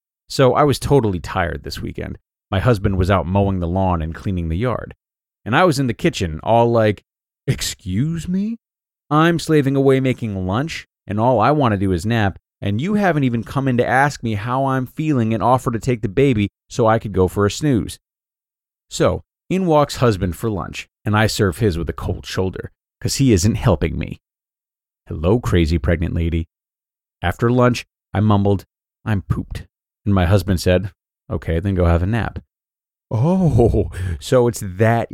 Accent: American